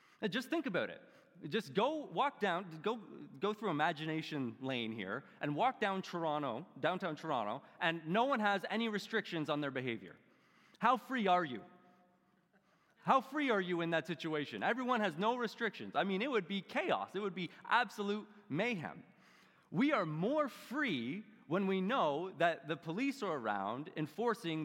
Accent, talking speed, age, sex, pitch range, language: American, 170 wpm, 30-49, male, 160-225 Hz, English